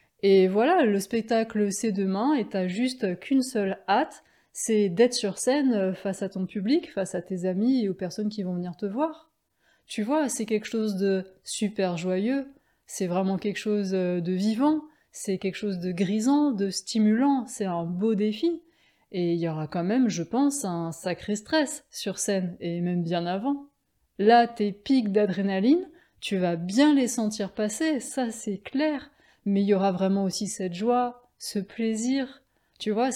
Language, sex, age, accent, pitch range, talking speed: French, female, 20-39, French, 190-255 Hz, 180 wpm